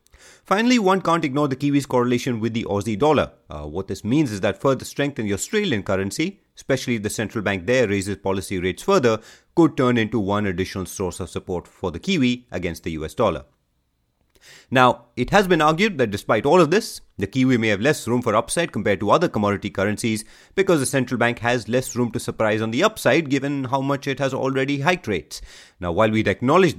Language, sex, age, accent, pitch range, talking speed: English, male, 30-49, Indian, 95-130 Hz, 215 wpm